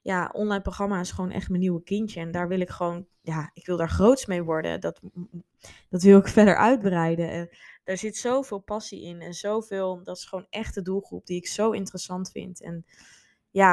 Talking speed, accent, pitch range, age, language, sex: 205 wpm, Dutch, 170-195 Hz, 20-39, Dutch, female